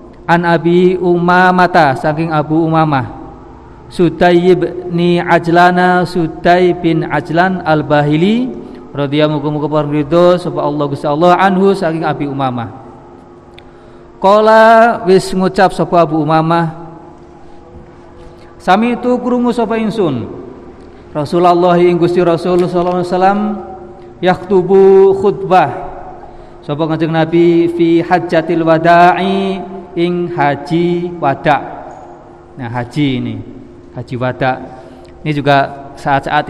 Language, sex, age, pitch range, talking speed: Indonesian, male, 50-69, 130-175 Hz, 85 wpm